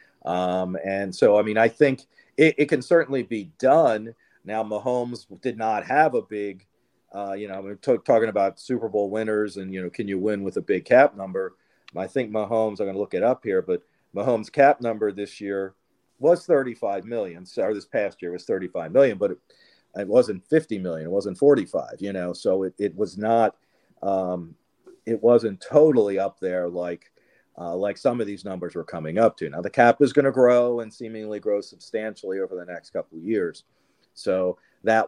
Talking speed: 200 wpm